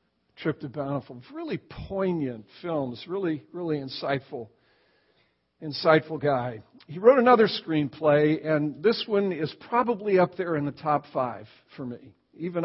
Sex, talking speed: male, 140 wpm